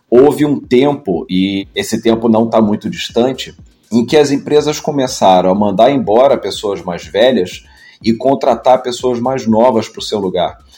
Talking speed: 165 wpm